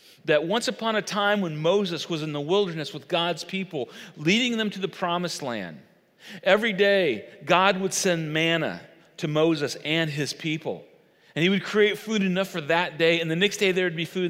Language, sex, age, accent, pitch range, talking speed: English, male, 40-59, American, 165-200 Hz, 200 wpm